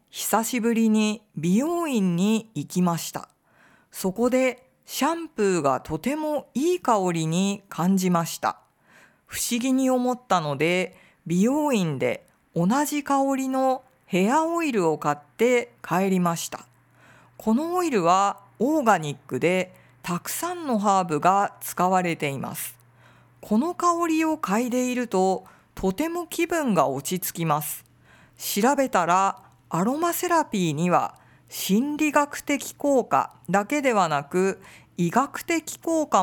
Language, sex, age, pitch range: Japanese, female, 50-69, 175-255 Hz